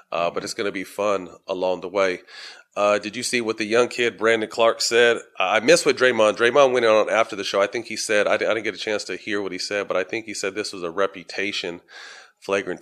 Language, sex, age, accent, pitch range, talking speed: English, male, 30-49, American, 100-115 Hz, 260 wpm